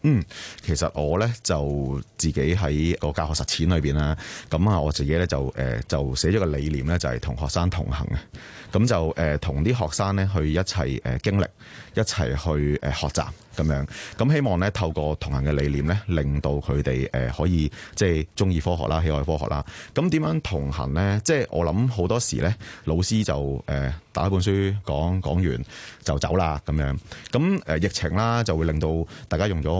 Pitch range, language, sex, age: 75-100 Hz, Chinese, male, 30-49